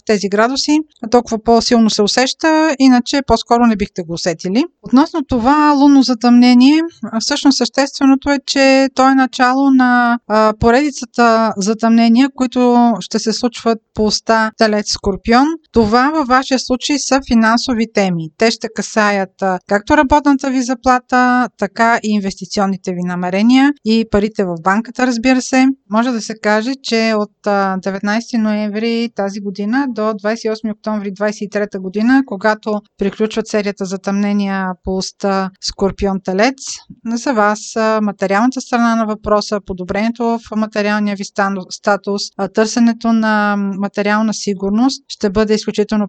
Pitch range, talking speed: 205-250 Hz, 130 wpm